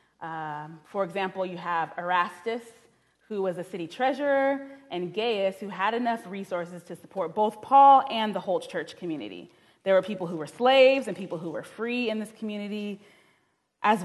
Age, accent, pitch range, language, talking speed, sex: 20-39, American, 175-235 Hz, English, 175 wpm, female